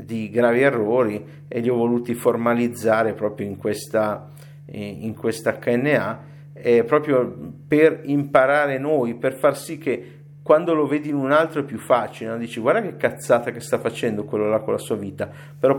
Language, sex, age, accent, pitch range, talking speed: Italian, male, 50-69, native, 115-145 Hz, 180 wpm